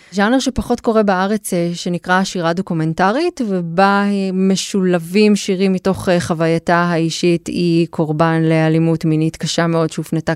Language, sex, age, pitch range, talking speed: Hebrew, female, 20-39, 170-200 Hz, 115 wpm